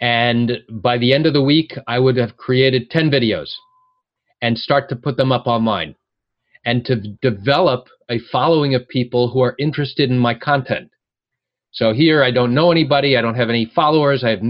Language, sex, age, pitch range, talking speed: English, male, 40-59, 120-145 Hz, 190 wpm